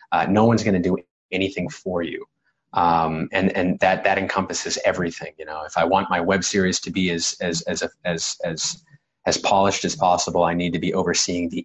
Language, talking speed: English, 215 wpm